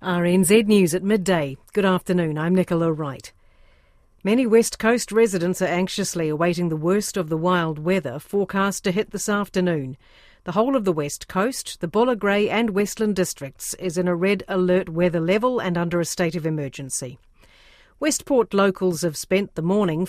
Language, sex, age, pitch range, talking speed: English, female, 50-69, 180-225 Hz, 175 wpm